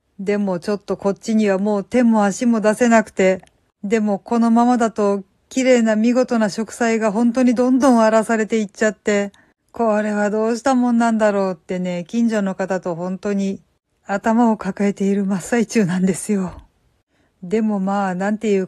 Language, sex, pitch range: Japanese, female, 190-225 Hz